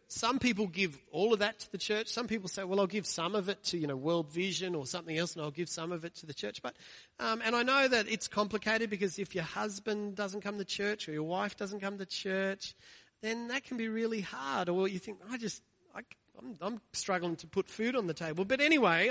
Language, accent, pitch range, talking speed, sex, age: English, Australian, 180-230 Hz, 255 wpm, male, 40-59